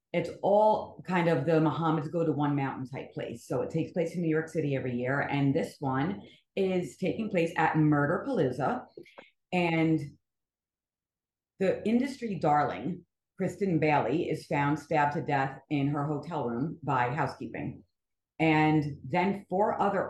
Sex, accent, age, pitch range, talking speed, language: female, American, 40-59, 135-165 Hz, 155 wpm, English